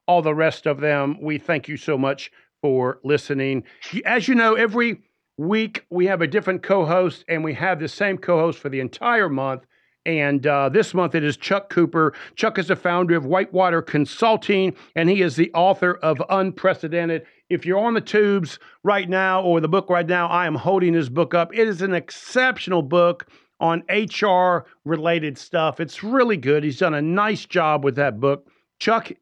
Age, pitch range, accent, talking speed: 50-69, 160-215 Hz, American, 190 wpm